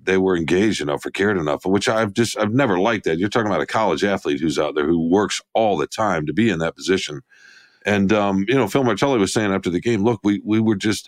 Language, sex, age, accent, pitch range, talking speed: English, male, 50-69, American, 95-115 Hz, 265 wpm